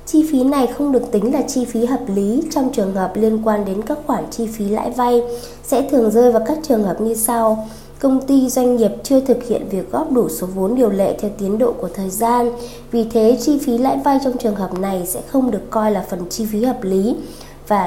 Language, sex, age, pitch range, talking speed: Vietnamese, female, 20-39, 200-250 Hz, 245 wpm